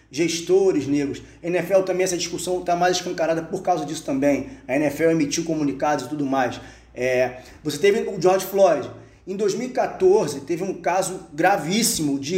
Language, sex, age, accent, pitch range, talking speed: Portuguese, male, 20-39, Brazilian, 160-200 Hz, 160 wpm